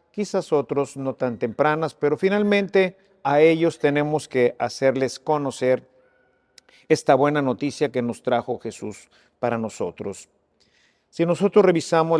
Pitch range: 130-165 Hz